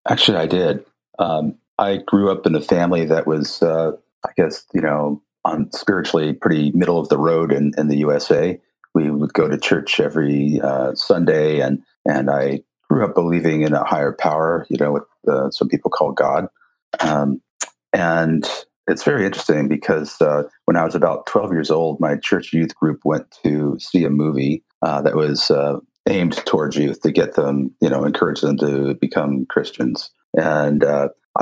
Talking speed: 185 wpm